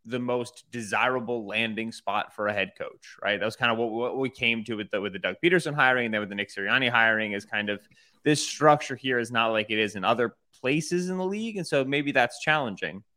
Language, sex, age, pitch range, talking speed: English, male, 20-39, 110-130 Hz, 250 wpm